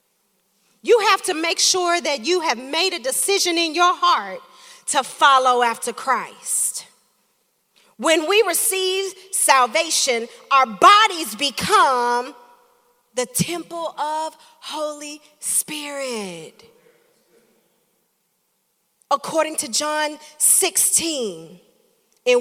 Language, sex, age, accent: English, female, 40-59, American